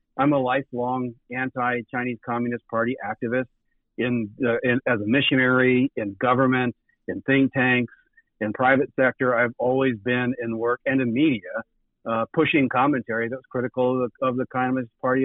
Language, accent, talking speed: English, American, 155 wpm